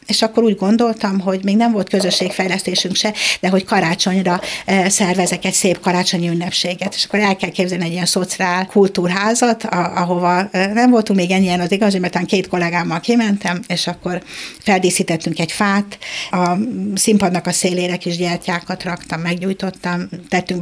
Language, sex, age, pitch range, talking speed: Hungarian, female, 60-79, 175-195 Hz, 155 wpm